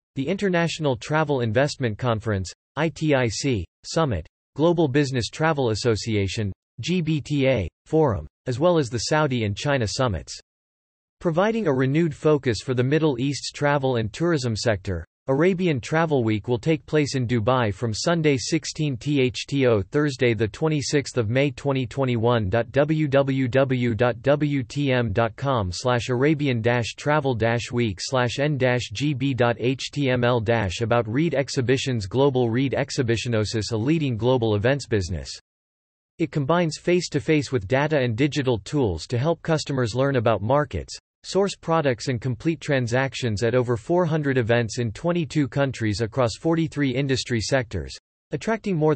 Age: 40-59